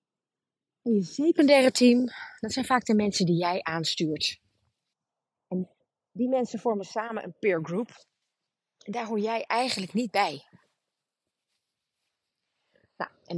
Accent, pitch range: Dutch, 180-245 Hz